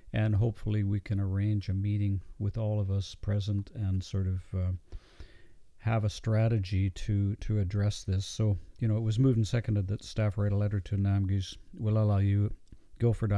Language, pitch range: English, 95-115 Hz